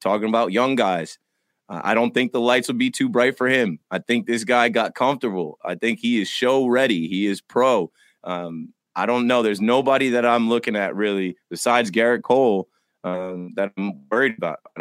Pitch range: 100-125 Hz